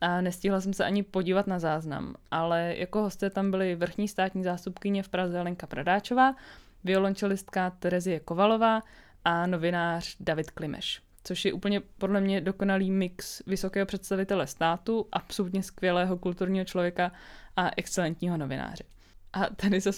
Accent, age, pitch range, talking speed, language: native, 20-39, 180-205 Hz, 140 wpm, Czech